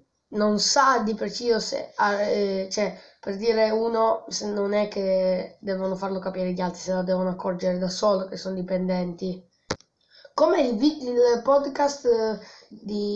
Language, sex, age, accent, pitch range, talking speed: Italian, female, 20-39, native, 195-230 Hz, 150 wpm